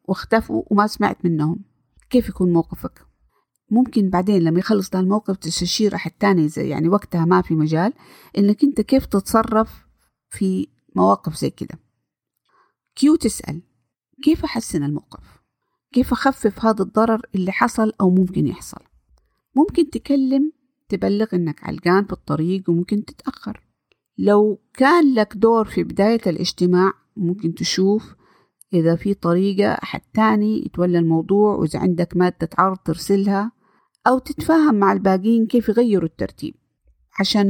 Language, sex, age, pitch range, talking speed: Arabic, female, 50-69, 175-225 Hz, 130 wpm